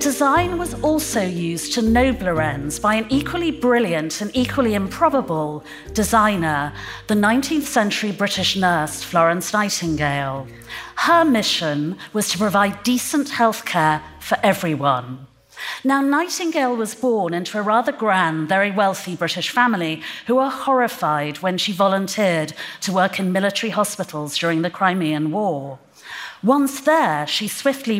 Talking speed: 135 wpm